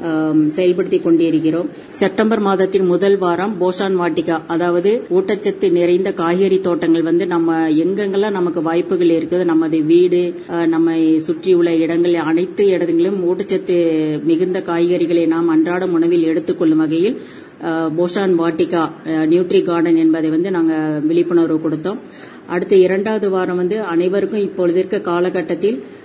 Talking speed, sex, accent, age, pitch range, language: 120 wpm, female, native, 30-49, 170-195 Hz, Tamil